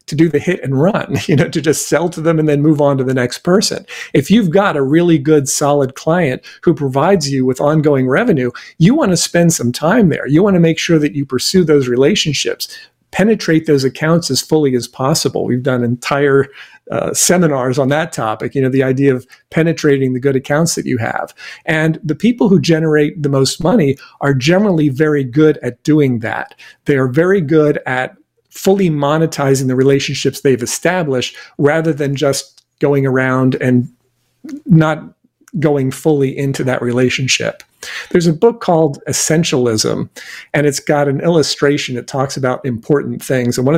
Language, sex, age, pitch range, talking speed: English, male, 50-69, 130-165 Hz, 185 wpm